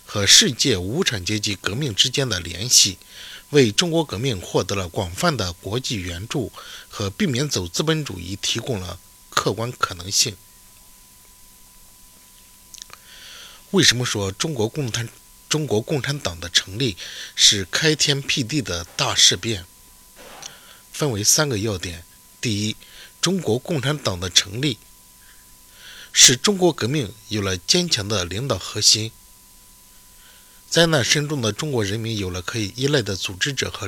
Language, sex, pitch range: Chinese, male, 95-140 Hz